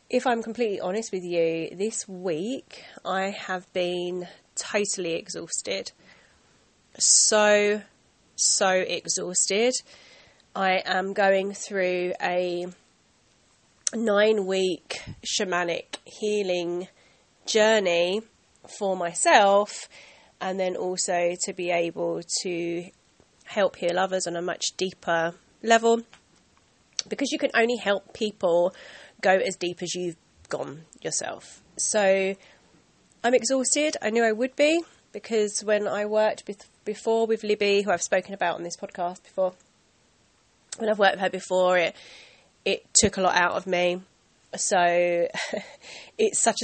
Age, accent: 20-39, British